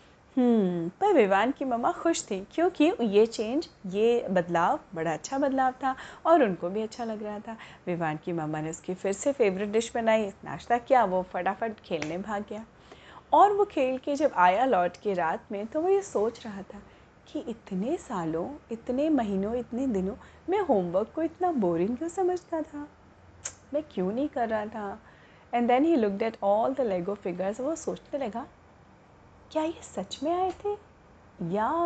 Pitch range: 190-270 Hz